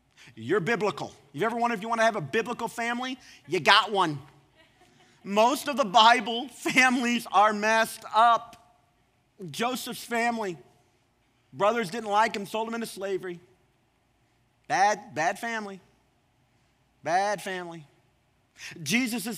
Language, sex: English, male